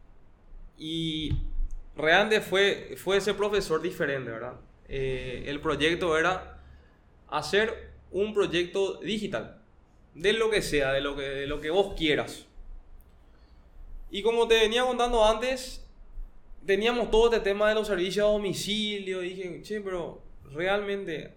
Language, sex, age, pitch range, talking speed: Spanish, male, 20-39, 135-190 Hz, 130 wpm